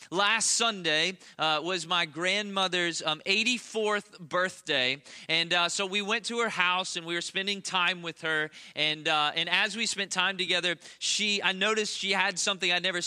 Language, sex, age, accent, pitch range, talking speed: English, male, 20-39, American, 175-210 Hz, 185 wpm